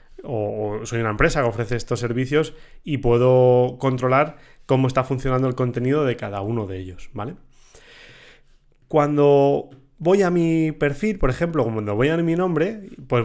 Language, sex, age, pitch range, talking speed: Spanish, male, 30-49, 120-155 Hz, 160 wpm